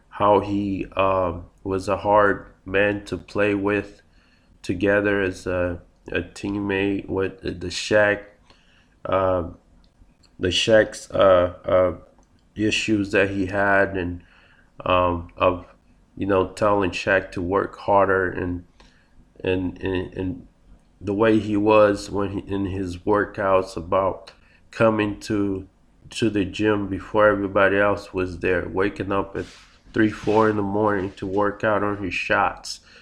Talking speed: 135 wpm